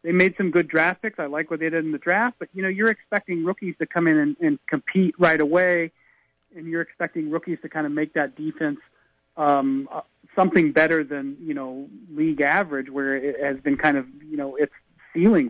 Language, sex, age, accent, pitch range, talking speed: English, male, 30-49, American, 150-200 Hz, 215 wpm